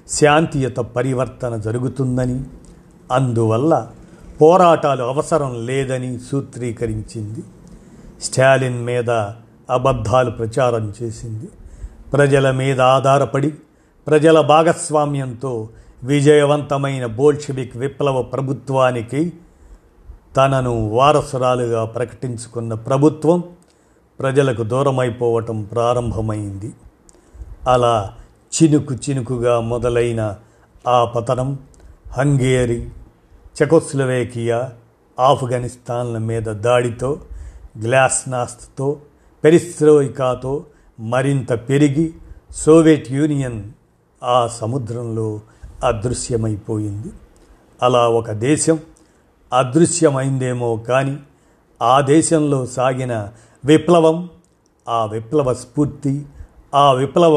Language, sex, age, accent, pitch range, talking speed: Telugu, male, 50-69, native, 115-145 Hz, 65 wpm